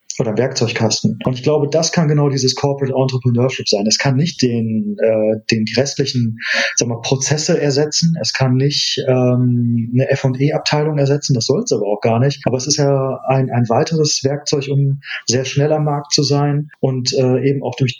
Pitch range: 125-145 Hz